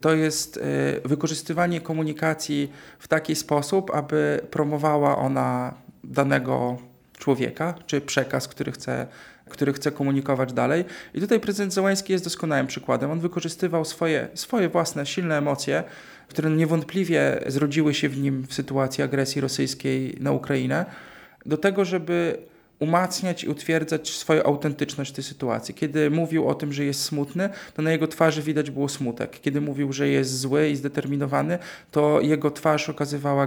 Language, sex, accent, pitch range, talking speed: Polish, male, native, 140-160 Hz, 145 wpm